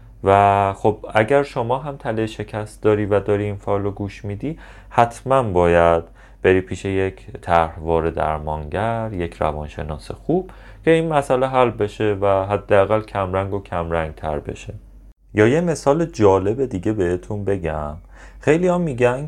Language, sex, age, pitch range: Persian, male, 30-49, 85-115 Hz